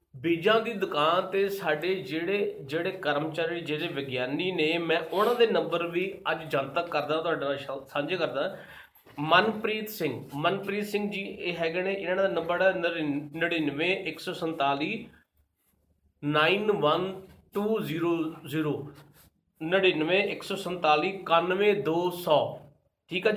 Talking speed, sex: 110 wpm, male